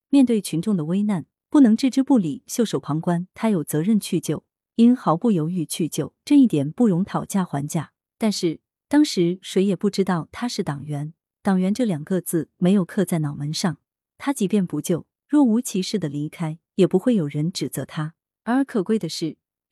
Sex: female